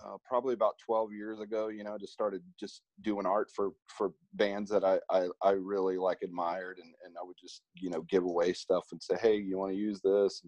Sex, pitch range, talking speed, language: male, 90-110 Hz, 240 wpm, English